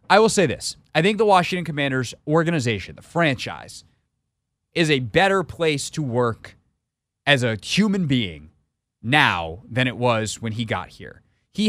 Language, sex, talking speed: English, male, 160 wpm